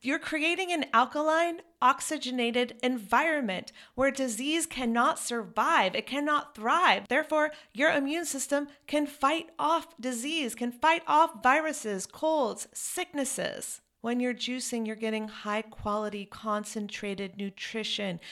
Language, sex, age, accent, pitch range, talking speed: English, female, 40-59, American, 185-245 Hz, 120 wpm